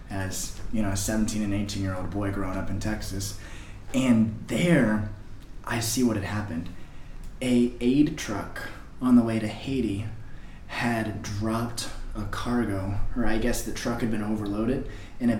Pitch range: 100-120 Hz